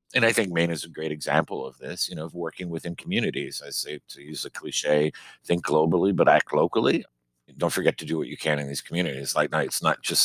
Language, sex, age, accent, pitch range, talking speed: English, male, 50-69, American, 75-95 Hz, 245 wpm